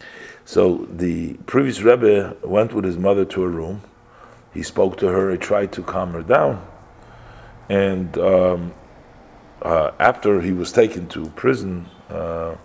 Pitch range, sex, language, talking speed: 90-115 Hz, male, English, 140 wpm